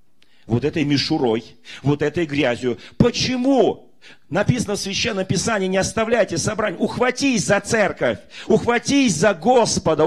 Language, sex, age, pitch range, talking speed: Russian, male, 40-59, 140-185 Hz, 120 wpm